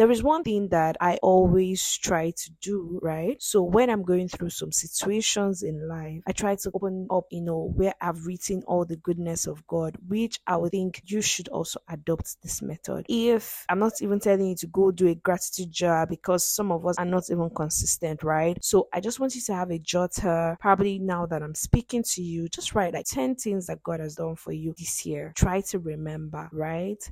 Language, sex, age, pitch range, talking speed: English, female, 20-39, 165-195 Hz, 220 wpm